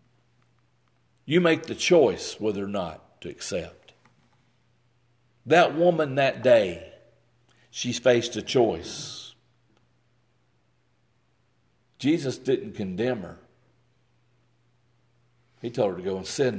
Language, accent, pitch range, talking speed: English, American, 115-125 Hz, 100 wpm